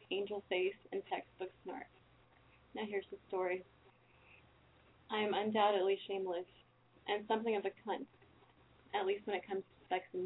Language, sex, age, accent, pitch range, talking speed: English, female, 20-39, American, 185-215 Hz, 150 wpm